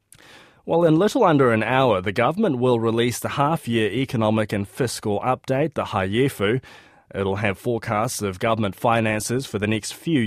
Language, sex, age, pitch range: English, male, 20-39, 105-135 Hz